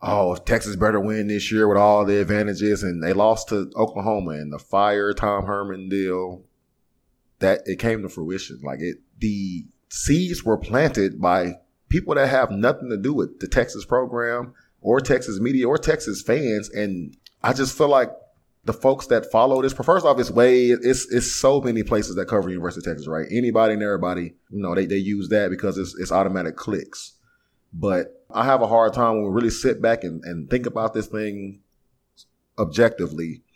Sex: male